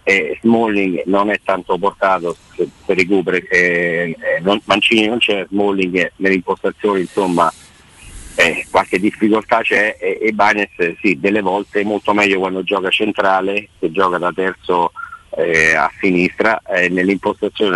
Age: 50-69